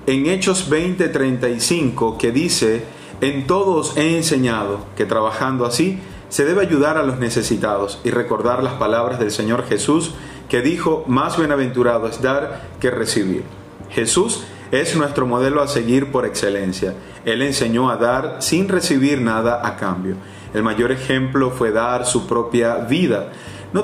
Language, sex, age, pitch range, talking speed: Spanish, male, 30-49, 115-140 Hz, 150 wpm